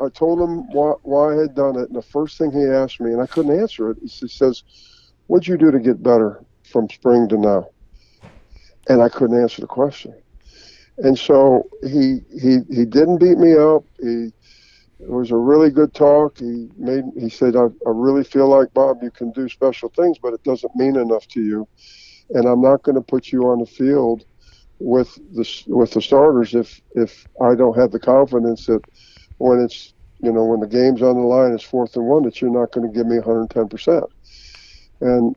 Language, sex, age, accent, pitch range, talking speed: English, male, 50-69, American, 115-135 Hz, 210 wpm